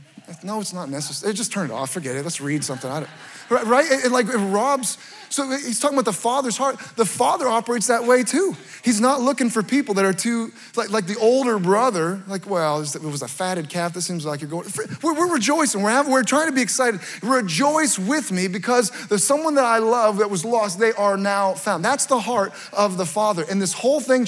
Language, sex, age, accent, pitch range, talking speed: English, male, 20-39, American, 170-230 Hz, 230 wpm